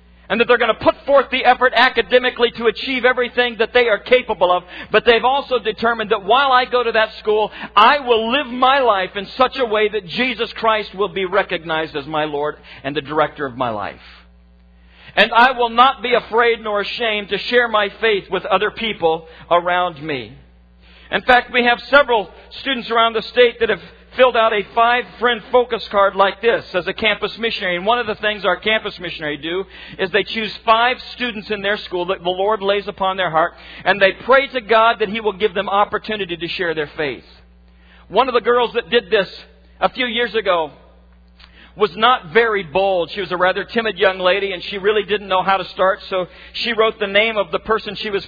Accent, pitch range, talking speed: American, 185-235 Hz, 215 wpm